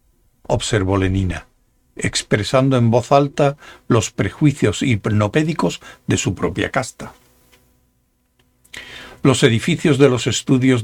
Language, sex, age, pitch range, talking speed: Spanish, male, 60-79, 105-145 Hz, 100 wpm